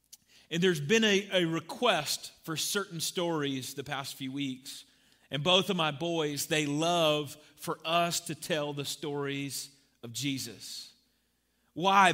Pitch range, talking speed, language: 140-180 Hz, 145 wpm, English